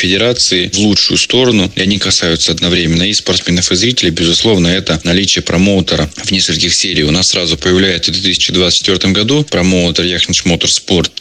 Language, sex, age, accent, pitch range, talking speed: Russian, male, 20-39, native, 85-95 Hz, 150 wpm